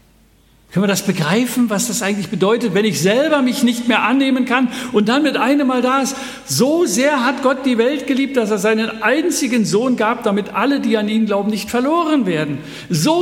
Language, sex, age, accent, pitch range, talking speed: German, male, 60-79, German, 175-250 Hz, 210 wpm